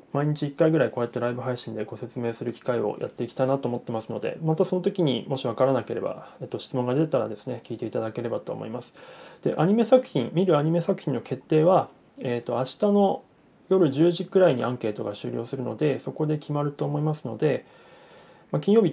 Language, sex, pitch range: Japanese, male, 120-165 Hz